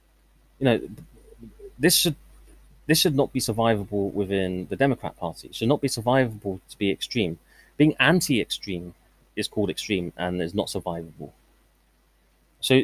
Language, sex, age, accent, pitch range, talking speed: English, male, 30-49, British, 95-135 Hz, 145 wpm